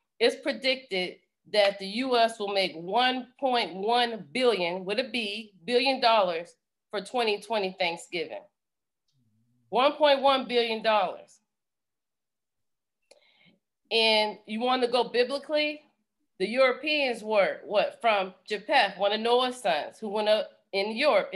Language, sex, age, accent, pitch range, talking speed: English, female, 40-59, American, 200-255 Hz, 115 wpm